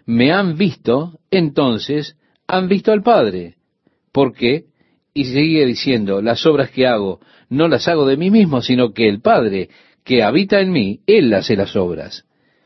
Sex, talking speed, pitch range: male, 165 wpm, 115-175 Hz